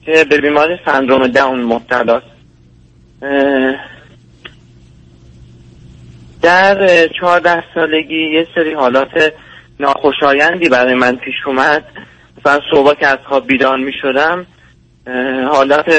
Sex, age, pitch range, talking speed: male, 30-49, 125-170 Hz, 95 wpm